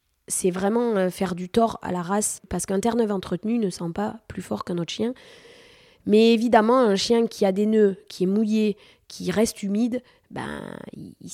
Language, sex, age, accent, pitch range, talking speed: French, female, 20-39, French, 180-220 Hz, 190 wpm